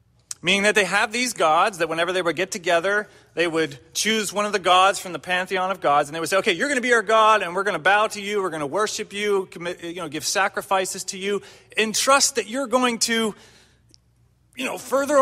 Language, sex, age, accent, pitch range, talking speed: English, male, 30-49, American, 130-195 Hz, 250 wpm